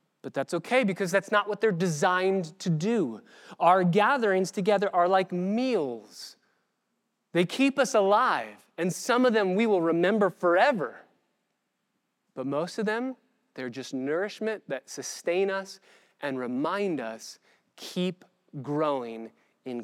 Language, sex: English, male